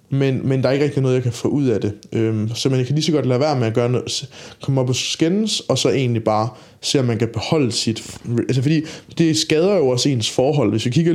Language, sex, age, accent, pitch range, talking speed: Danish, male, 20-39, native, 120-150 Hz, 280 wpm